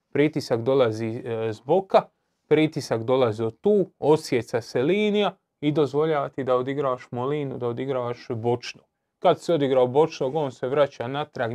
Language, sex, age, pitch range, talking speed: Croatian, male, 30-49, 130-165 Hz, 140 wpm